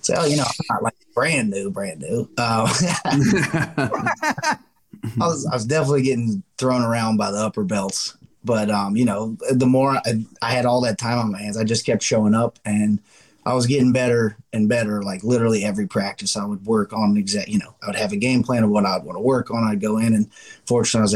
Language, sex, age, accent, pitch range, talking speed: English, male, 20-39, American, 110-135 Hz, 220 wpm